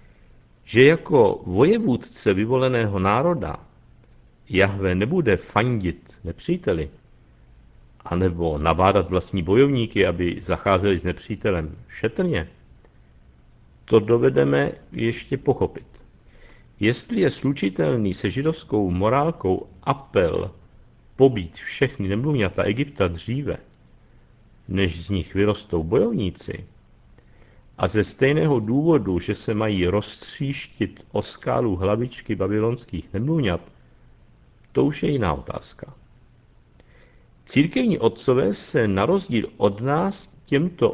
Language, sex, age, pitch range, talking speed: Czech, male, 60-79, 95-135 Hz, 95 wpm